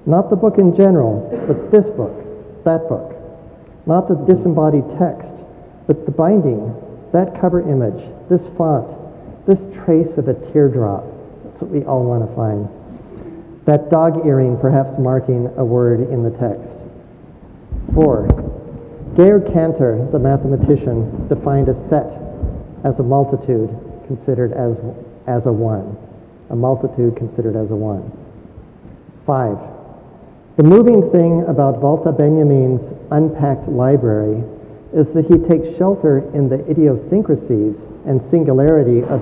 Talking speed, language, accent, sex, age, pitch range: 130 wpm, English, American, male, 50-69, 120-155 Hz